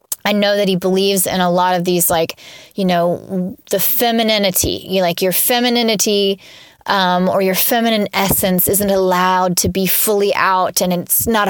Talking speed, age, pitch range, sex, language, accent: 165 wpm, 20-39, 185-210 Hz, female, English, American